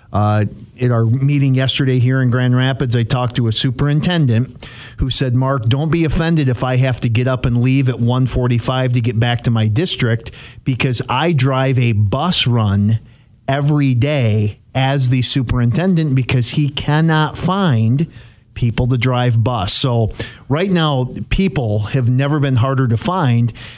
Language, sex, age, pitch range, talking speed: English, male, 50-69, 120-140 Hz, 165 wpm